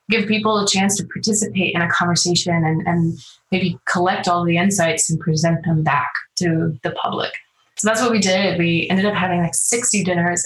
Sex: female